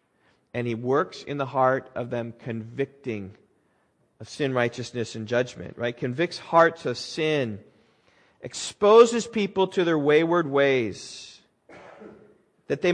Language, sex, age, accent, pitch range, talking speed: English, male, 40-59, American, 125-175 Hz, 125 wpm